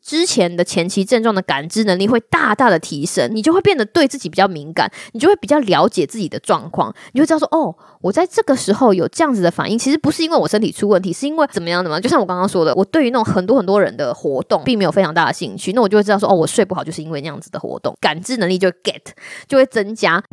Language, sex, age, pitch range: Chinese, female, 20-39, 185-300 Hz